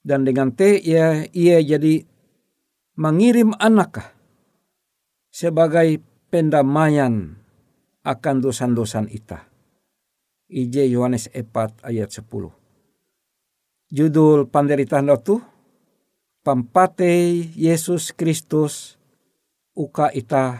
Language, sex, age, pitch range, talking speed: Indonesian, male, 60-79, 130-170 Hz, 75 wpm